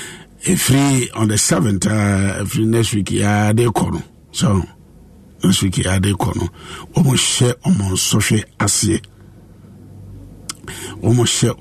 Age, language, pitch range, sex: 50-69, English, 100-125 Hz, male